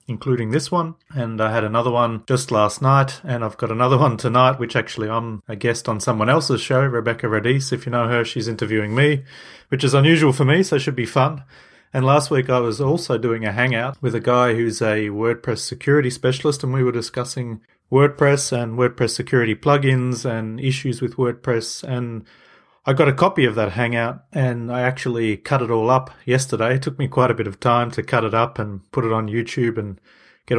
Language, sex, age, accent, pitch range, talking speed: English, male, 30-49, Australian, 115-130 Hz, 215 wpm